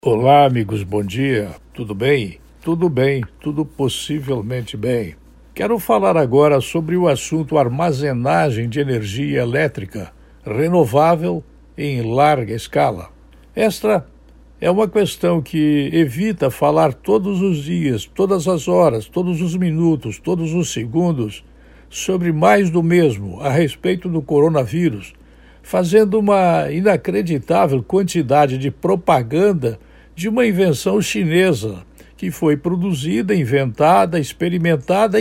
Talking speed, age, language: 115 wpm, 60-79, Portuguese